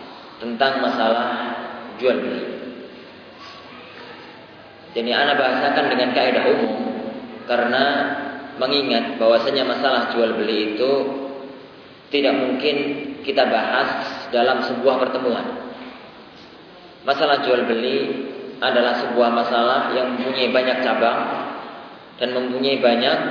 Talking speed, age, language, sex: 95 wpm, 20-39, Malay, male